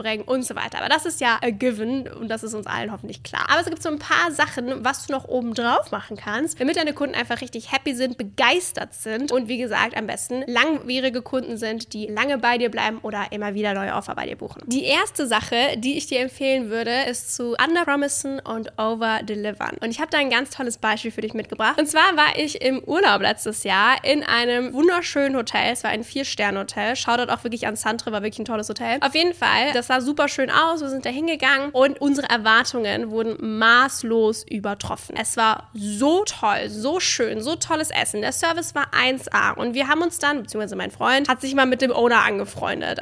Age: 10-29